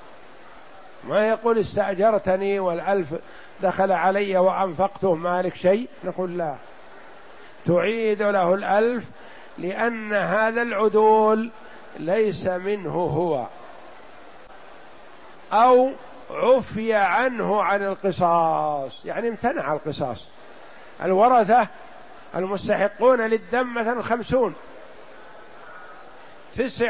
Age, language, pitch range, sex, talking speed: 50-69, Arabic, 180-225 Hz, male, 75 wpm